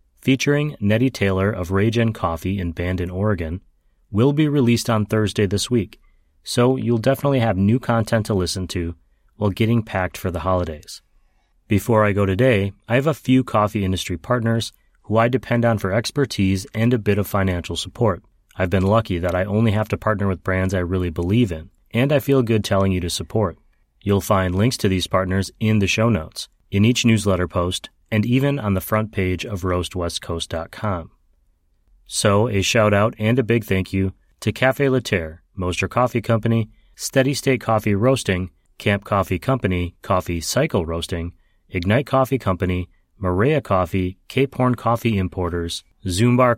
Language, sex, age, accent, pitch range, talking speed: English, male, 30-49, American, 90-115 Hz, 170 wpm